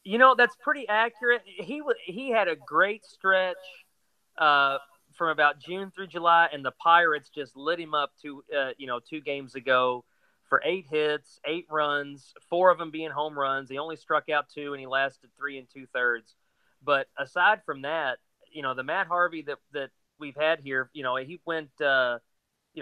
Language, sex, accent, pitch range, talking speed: English, male, American, 135-170 Hz, 195 wpm